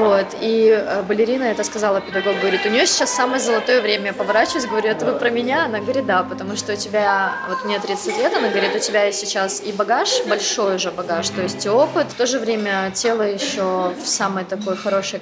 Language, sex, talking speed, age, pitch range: Russian, female, 215 wpm, 20-39, 195-230 Hz